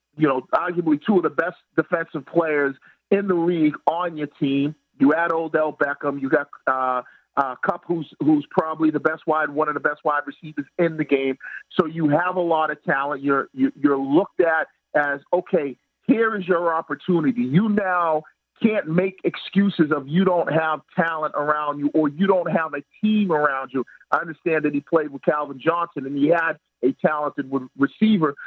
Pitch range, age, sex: 145-175 Hz, 40-59, male